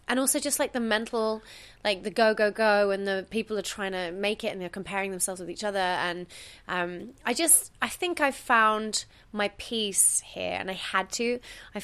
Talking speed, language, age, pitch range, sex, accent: 215 wpm, English, 20-39, 175-210 Hz, female, British